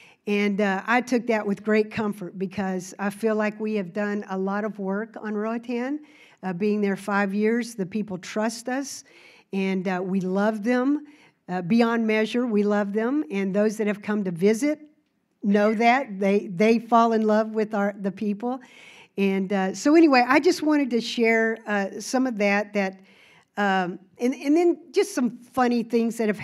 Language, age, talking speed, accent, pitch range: English, 50-69, 190 wpm, American, 195-240 Hz